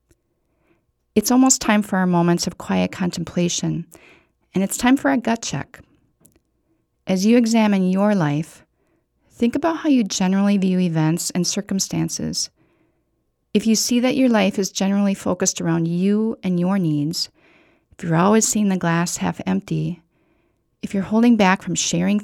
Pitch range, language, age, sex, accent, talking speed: 170-220 Hz, English, 40-59, female, American, 155 wpm